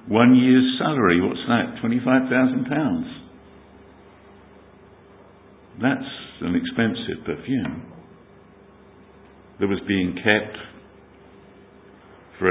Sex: male